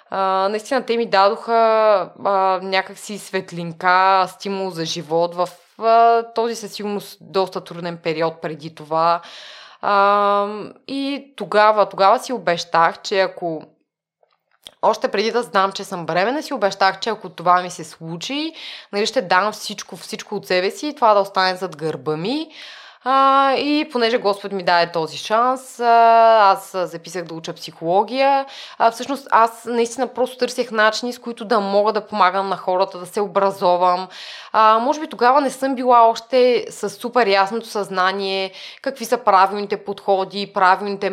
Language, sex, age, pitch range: Bulgarian, female, 20-39, 185-230 Hz